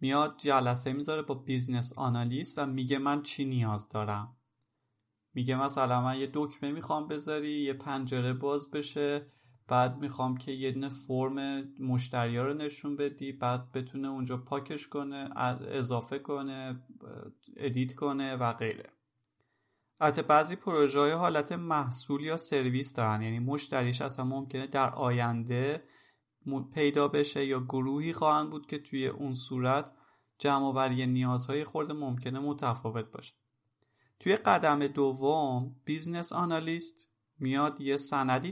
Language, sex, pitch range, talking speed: Persian, male, 125-145 Hz, 130 wpm